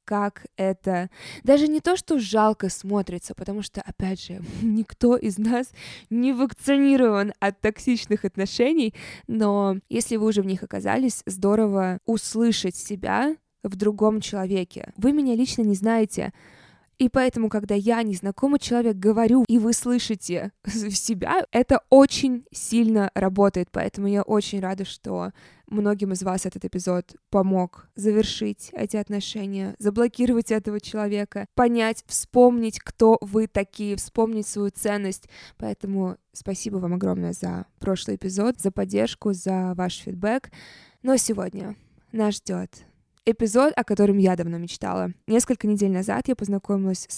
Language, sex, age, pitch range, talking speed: Russian, female, 20-39, 195-235 Hz, 135 wpm